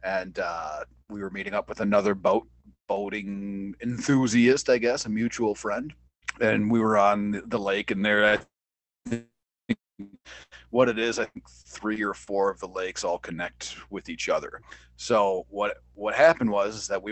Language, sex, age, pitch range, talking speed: English, male, 30-49, 100-135 Hz, 165 wpm